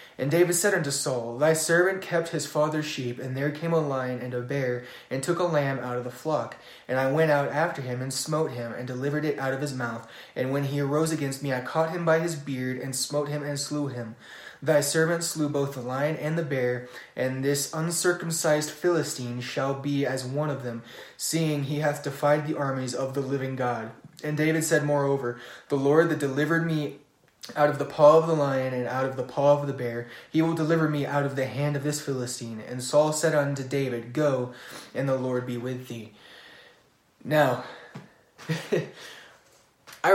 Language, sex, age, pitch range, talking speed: English, male, 20-39, 125-150 Hz, 210 wpm